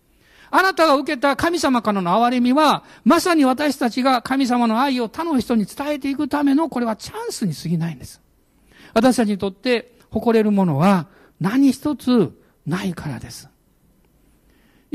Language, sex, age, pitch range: Japanese, male, 50-69, 170-255 Hz